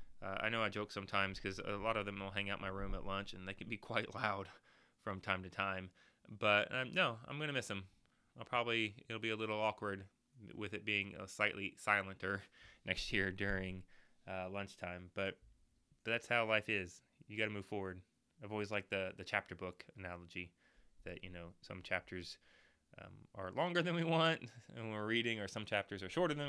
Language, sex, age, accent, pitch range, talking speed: English, male, 20-39, American, 95-115 Hz, 210 wpm